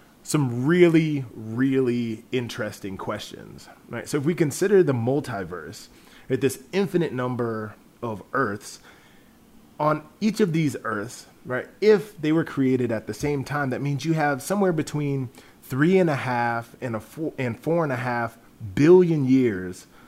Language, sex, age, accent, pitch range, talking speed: English, male, 30-49, American, 115-155 Hz, 150 wpm